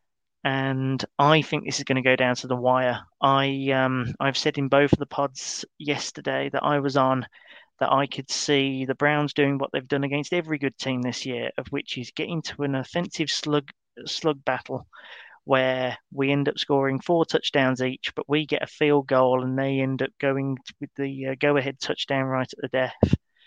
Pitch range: 135-155 Hz